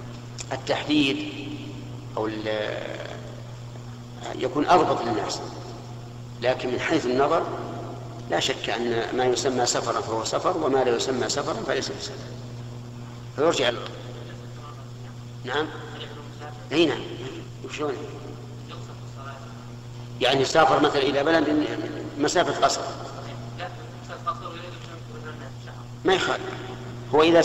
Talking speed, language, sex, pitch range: 90 wpm, Arabic, male, 120-130 Hz